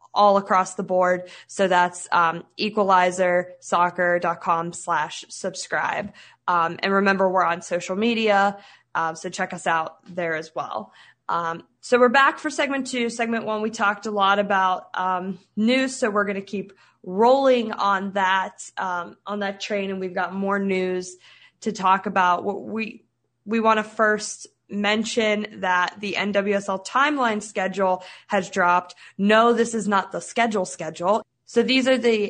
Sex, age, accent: female, 20-39, American